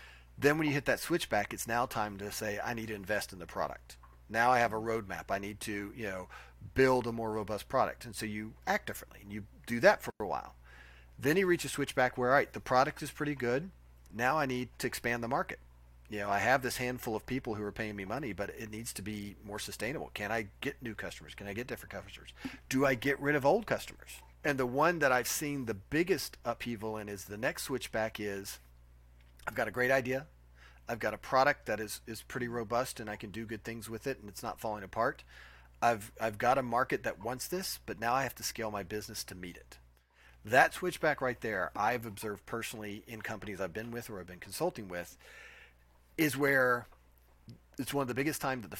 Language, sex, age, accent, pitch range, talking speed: English, male, 40-59, American, 95-125 Hz, 235 wpm